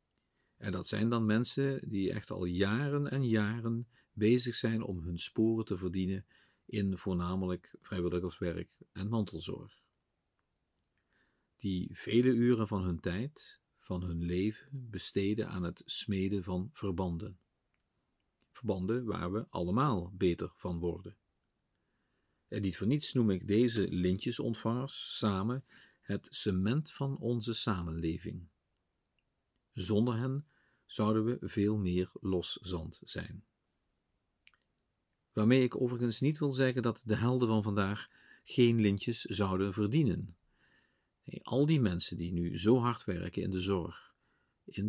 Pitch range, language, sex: 90-120 Hz, Dutch, male